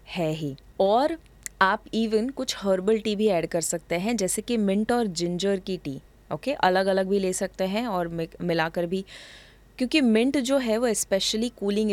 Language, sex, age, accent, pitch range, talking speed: Hindi, female, 20-39, native, 170-215 Hz, 195 wpm